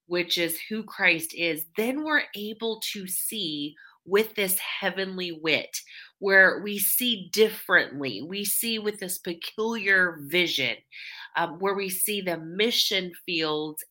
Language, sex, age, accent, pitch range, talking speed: English, female, 30-49, American, 150-190 Hz, 135 wpm